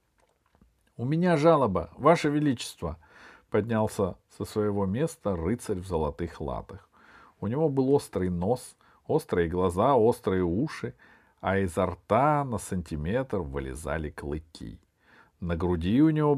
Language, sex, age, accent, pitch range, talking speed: Russian, male, 50-69, native, 100-160 Hz, 120 wpm